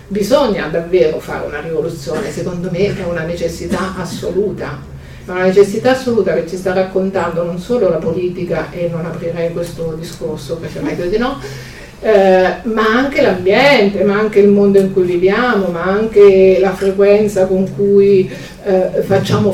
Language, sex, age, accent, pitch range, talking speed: Italian, female, 50-69, native, 175-200 Hz, 155 wpm